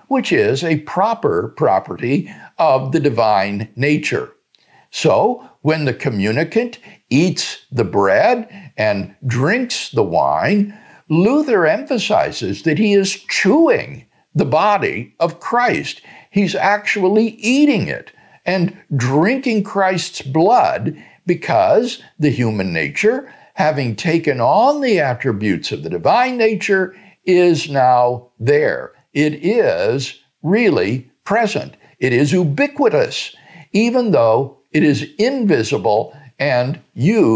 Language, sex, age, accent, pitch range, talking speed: English, male, 60-79, American, 140-220 Hz, 110 wpm